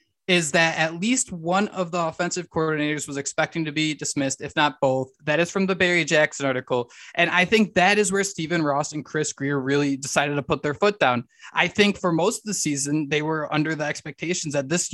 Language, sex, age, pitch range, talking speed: English, male, 20-39, 150-190 Hz, 225 wpm